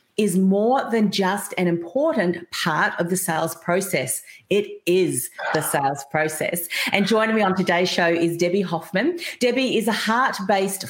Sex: female